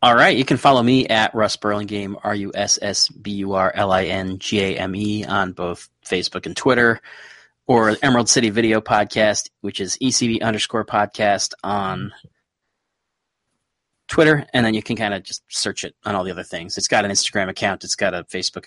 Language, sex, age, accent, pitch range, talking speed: English, male, 30-49, American, 100-120 Hz, 165 wpm